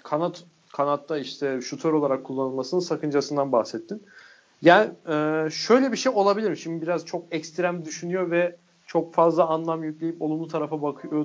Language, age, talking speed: Turkish, 40-59, 145 wpm